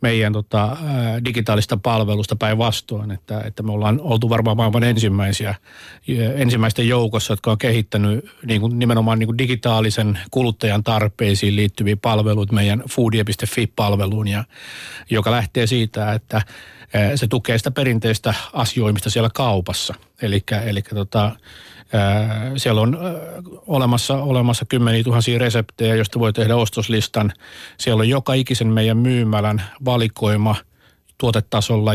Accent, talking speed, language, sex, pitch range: native, 115 wpm, Finnish, male, 105-120 Hz